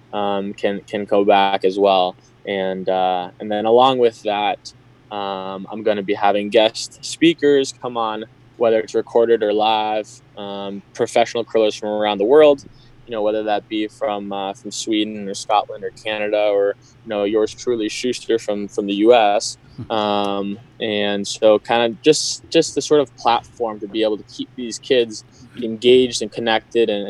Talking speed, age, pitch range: 180 wpm, 20-39, 100-120 Hz